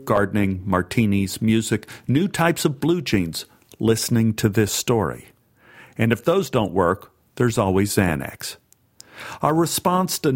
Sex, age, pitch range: male, 50-69, 105-135 Hz